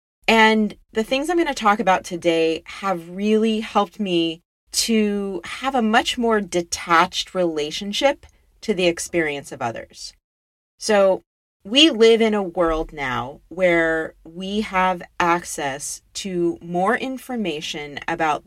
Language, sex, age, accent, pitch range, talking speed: English, female, 30-49, American, 165-220 Hz, 130 wpm